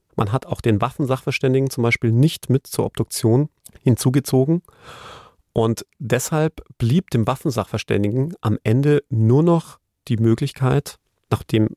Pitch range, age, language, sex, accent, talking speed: 110-135 Hz, 40-59, German, male, German, 120 wpm